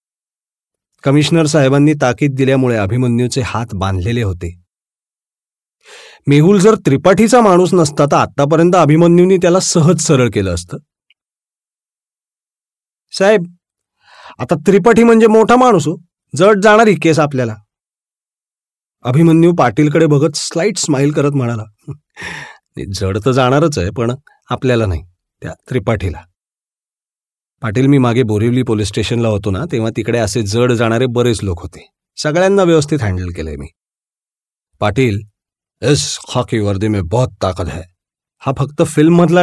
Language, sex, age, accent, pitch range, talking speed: Marathi, male, 40-59, native, 110-165 Hz, 120 wpm